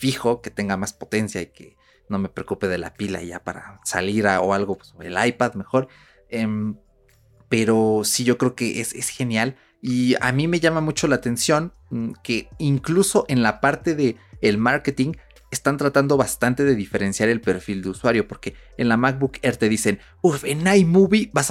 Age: 30-49